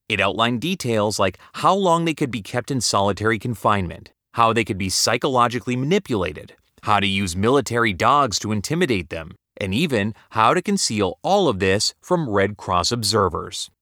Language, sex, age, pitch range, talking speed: English, male, 30-49, 100-145 Hz, 170 wpm